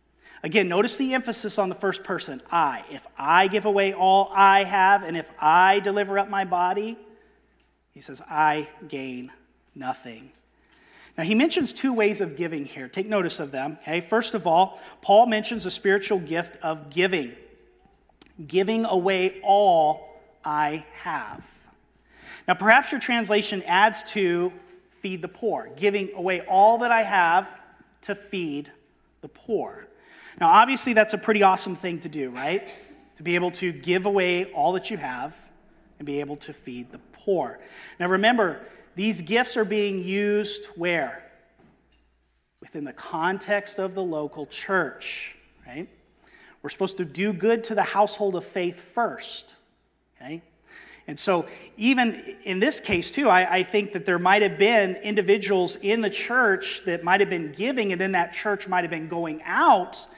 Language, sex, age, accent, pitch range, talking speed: English, male, 40-59, American, 170-210 Hz, 160 wpm